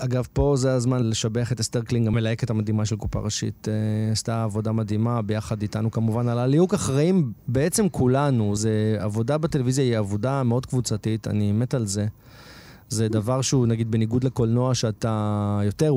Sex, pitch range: male, 110-140 Hz